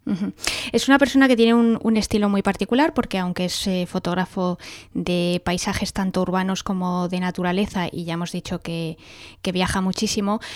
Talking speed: 170 wpm